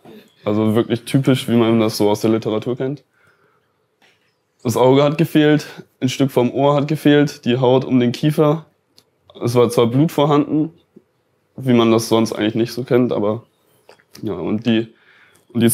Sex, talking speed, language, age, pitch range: male, 170 wpm, German, 20-39, 115-145 Hz